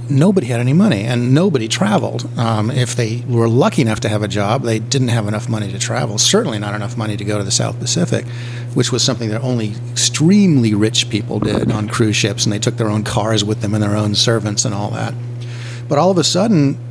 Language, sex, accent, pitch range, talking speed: English, male, American, 110-125 Hz, 235 wpm